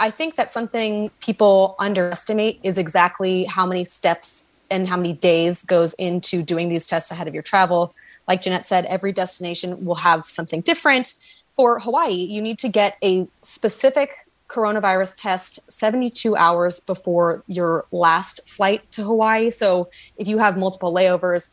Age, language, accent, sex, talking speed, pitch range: 20-39, English, American, female, 160 wpm, 175-210 Hz